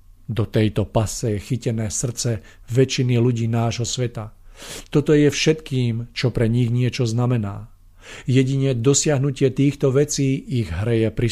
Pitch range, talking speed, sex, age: 115-135 Hz, 135 wpm, male, 50-69